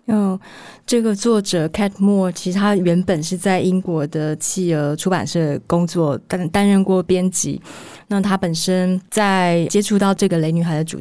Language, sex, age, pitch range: Chinese, female, 20-39, 165-195 Hz